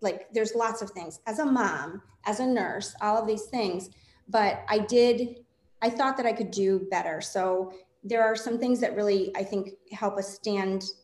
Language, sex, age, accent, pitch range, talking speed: English, female, 30-49, American, 195-225 Hz, 200 wpm